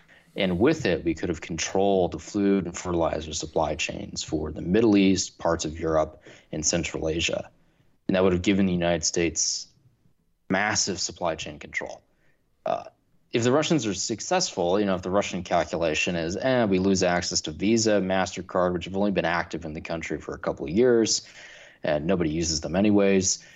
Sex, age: male, 20-39